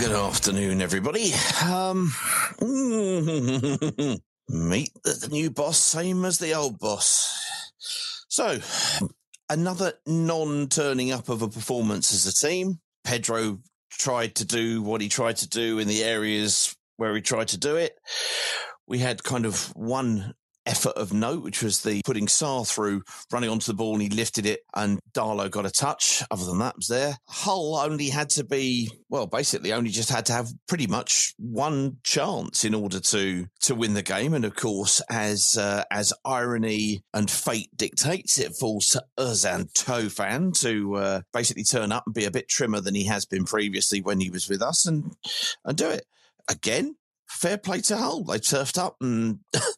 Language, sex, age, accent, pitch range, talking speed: English, male, 40-59, British, 105-155 Hz, 175 wpm